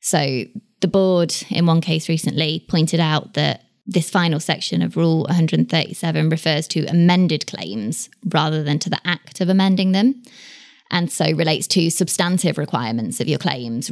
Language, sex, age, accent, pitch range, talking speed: English, female, 20-39, British, 155-190 Hz, 160 wpm